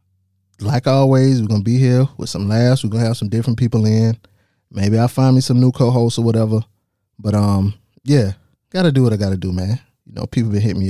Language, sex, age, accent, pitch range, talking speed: English, male, 20-39, American, 100-125 Hz, 225 wpm